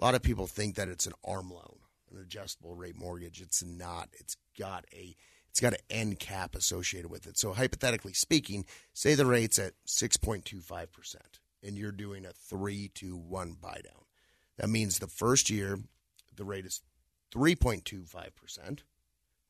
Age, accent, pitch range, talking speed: 40-59, American, 90-110 Hz, 165 wpm